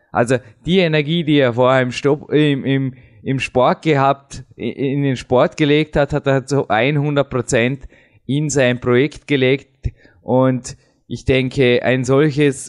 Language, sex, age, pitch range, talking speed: German, male, 20-39, 115-140 Hz, 130 wpm